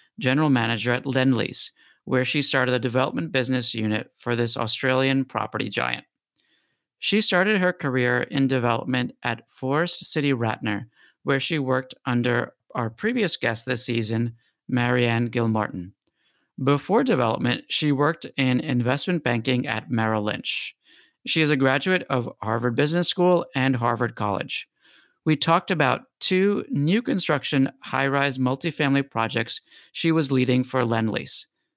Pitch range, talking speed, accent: 120-145 Hz, 135 wpm, American